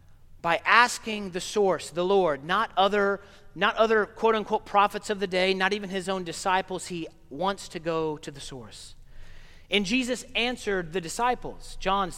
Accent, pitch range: American, 165-215 Hz